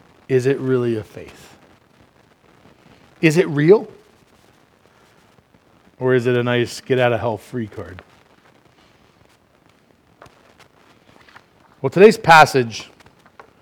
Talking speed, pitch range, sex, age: 95 wpm, 120-165 Hz, male, 40-59